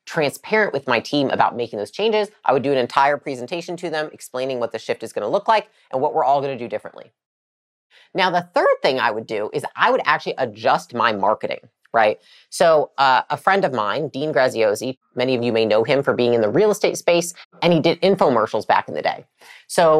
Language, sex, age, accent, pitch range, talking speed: English, female, 30-49, American, 140-200 Hz, 230 wpm